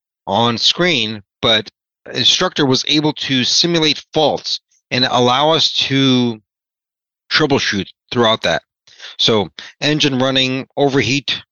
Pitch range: 105-145 Hz